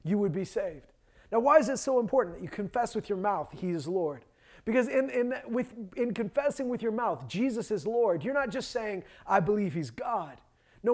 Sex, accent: male, American